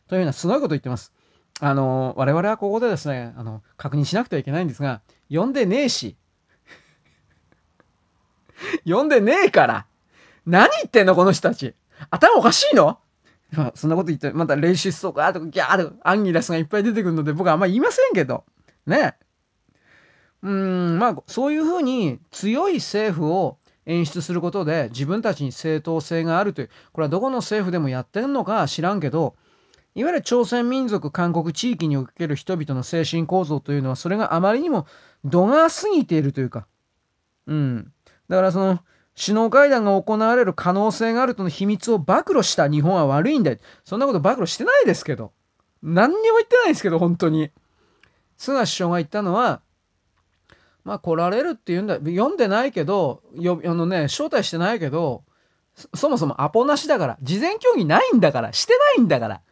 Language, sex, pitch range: Japanese, male, 150-225 Hz